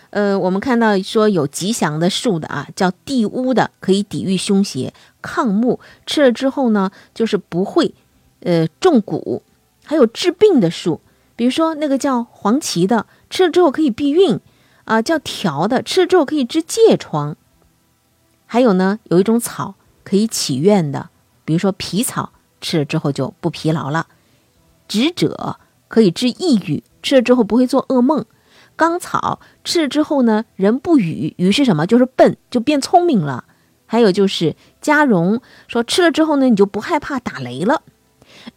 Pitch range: 170-260 Hz